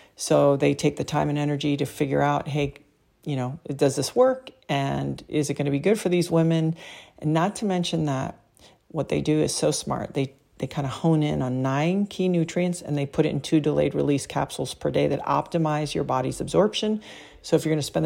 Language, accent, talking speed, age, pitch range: English, American, 230 wpm, 40-59, 140-165 Hz